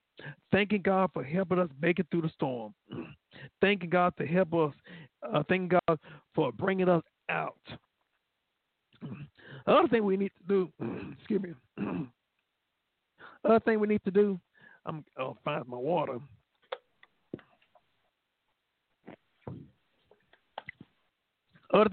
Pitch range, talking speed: 155-200 Hz, 120 wpm